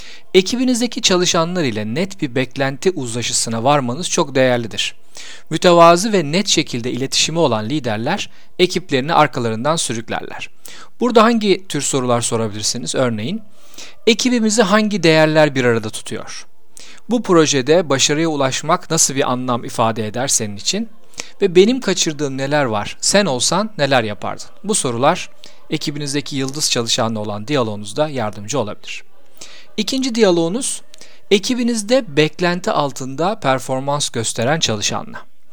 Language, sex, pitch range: Turkish, male, 125-185 Hz